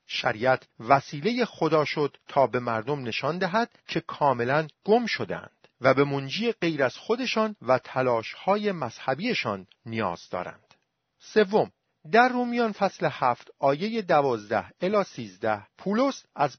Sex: male